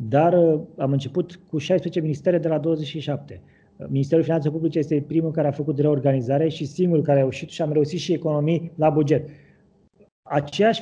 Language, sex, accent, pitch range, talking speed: Romanian, male, native, 150-185 Hz, 170 wpm